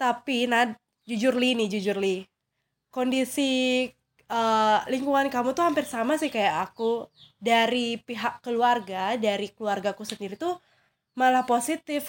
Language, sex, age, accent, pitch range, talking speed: Indonesian, female, 20-39, native, 220-270 Hz, 130 wpm